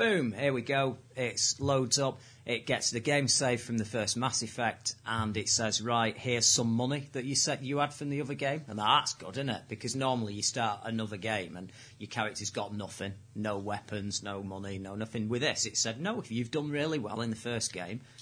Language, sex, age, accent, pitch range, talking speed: English, male, 40-59, British, 105-120 Hz, 225 wpm